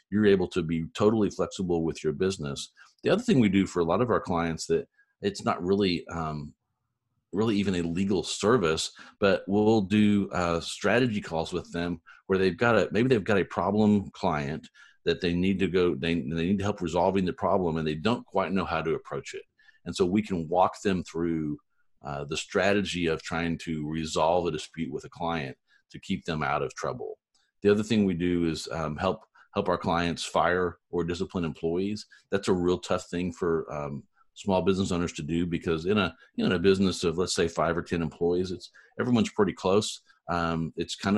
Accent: American